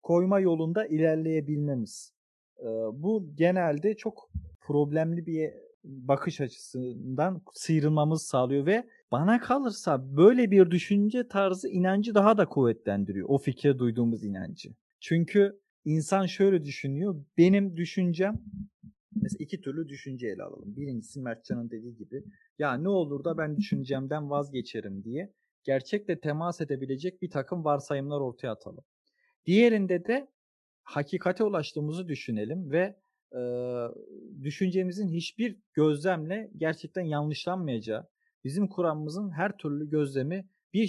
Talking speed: 110 wpm